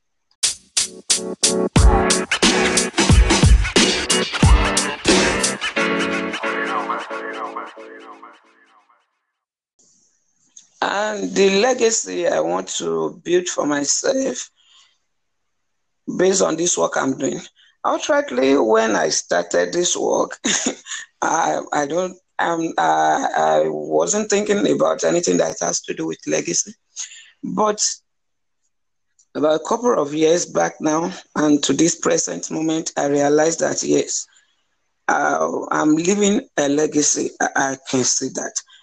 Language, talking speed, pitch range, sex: English, 95 wpm, 140-210 Hz, male